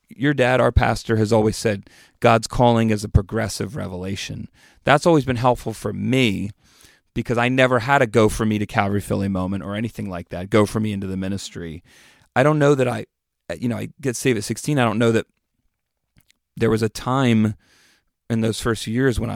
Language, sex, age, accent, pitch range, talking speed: English, male, 30-49, American, 105-130 Hz, 205 wpm